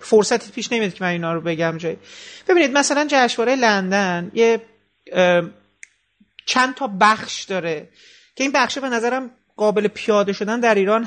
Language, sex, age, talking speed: Persian, male, 40-59, 150 wpm